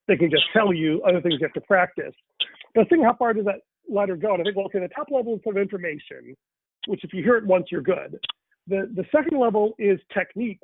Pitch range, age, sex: 175-215 Hz, 40-59, male